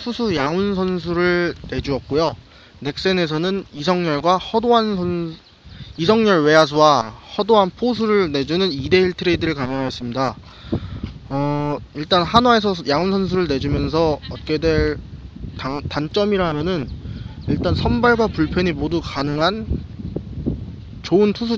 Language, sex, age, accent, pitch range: Korean, male, 20-39, native, 140-190 Hz